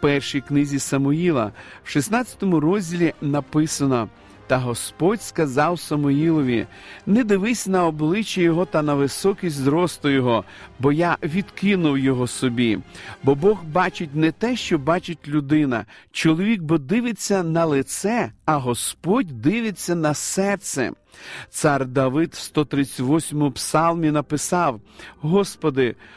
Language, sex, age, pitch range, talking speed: Ukrainian, male, 50-69, 140-185 Hz, 120 wpm